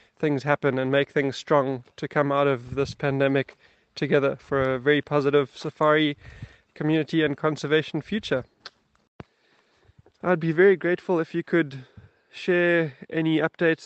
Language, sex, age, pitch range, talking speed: German, male, 20-39, 135-160 Hz, 140 wpm